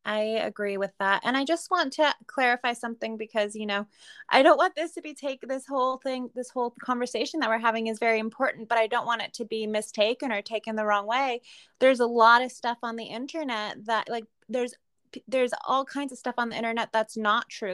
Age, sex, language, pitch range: 20-39, female, English, 220-255 Hz